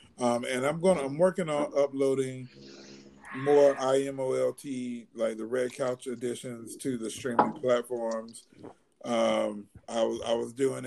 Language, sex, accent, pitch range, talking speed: English, male, American, 115-135 Hz, 165 wpm